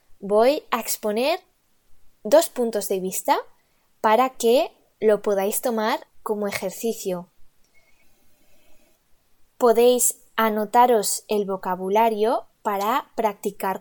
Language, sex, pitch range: Italian, female, 195-245 Hz